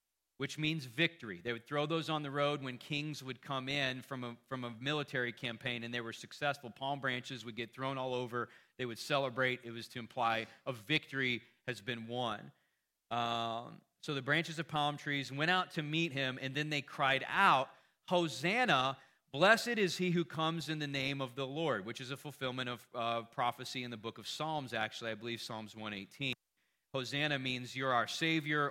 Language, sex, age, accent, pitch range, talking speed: English, male, 30-49, American, 120-150 Hz, 200 wpm